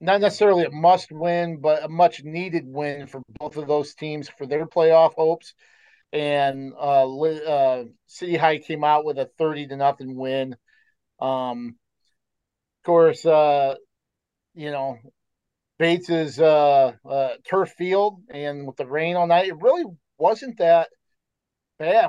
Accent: American